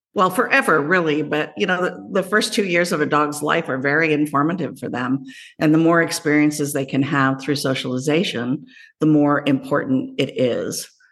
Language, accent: English, American